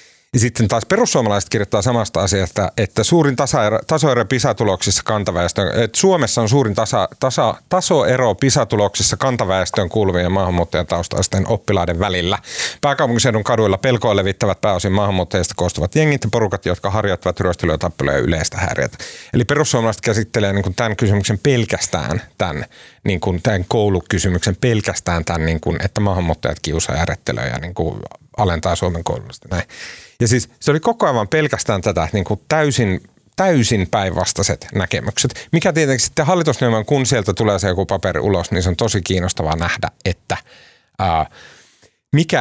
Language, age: Finnish, 30-49